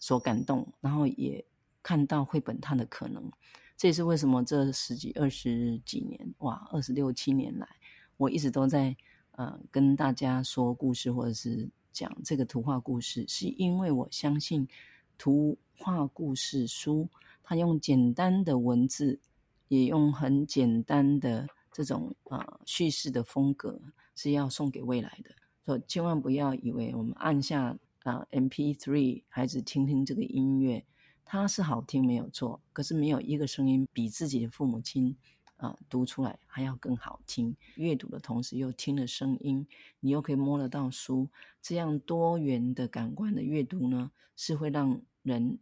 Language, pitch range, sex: Chinese, 125-150 Hz, female